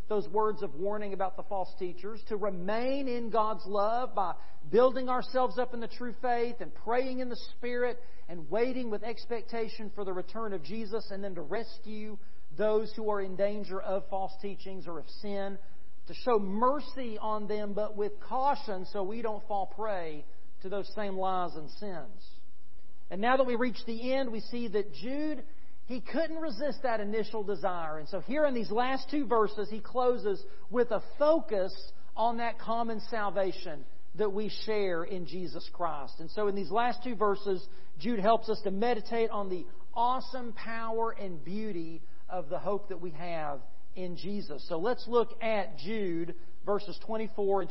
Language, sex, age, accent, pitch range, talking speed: English, male, 40-59, American, 190-235 Hz, 180 wpm